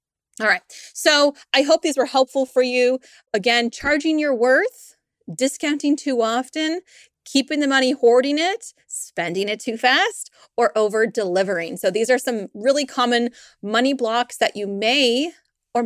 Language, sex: English, female